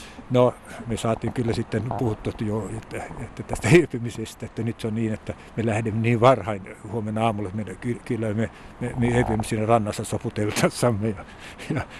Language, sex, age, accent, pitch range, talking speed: Finnish, male, 60-79, native, 105-125 Hz, 155 wpm